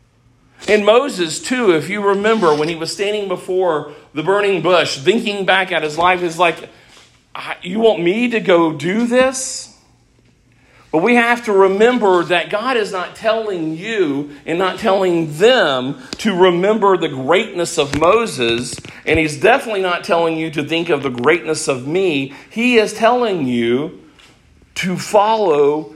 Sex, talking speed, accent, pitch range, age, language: male, 155 wpm, American, 135-200 Hz, 50-69, English